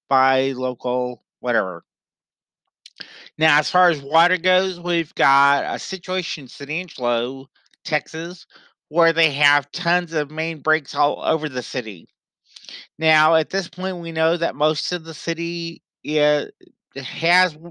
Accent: American